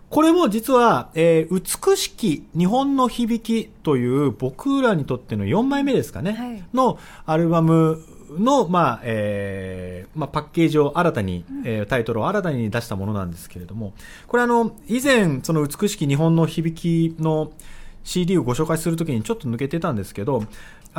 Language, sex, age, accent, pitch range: Japanese, male, 40-59, native, 105-175 Hz